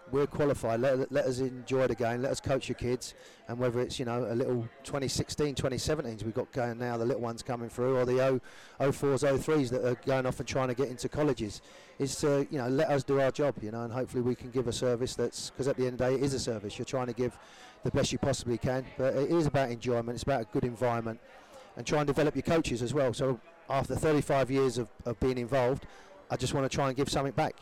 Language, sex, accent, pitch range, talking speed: English, male, British, 125-140 Hz, 260 wpm